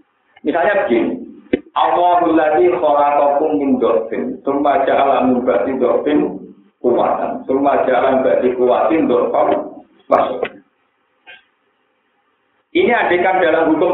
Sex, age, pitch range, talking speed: male, 50-69, 150-250 Hz, 95 wpm